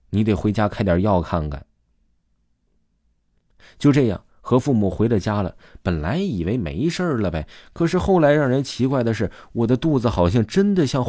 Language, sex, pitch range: Chinese, male, 85-125 Hz